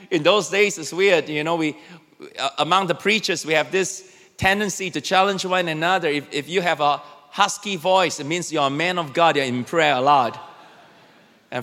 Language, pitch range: English, 175-265 Hz